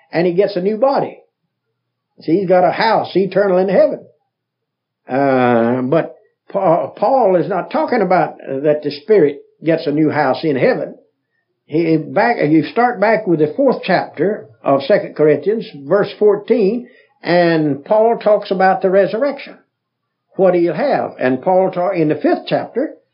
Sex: male